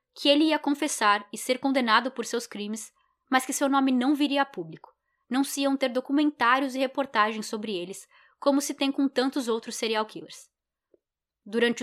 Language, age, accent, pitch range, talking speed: Portuguese, 10-29, Brazilian, 220-275 Hz, 185 wpm